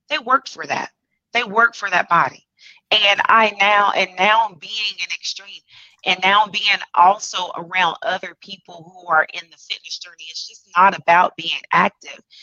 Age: 30-49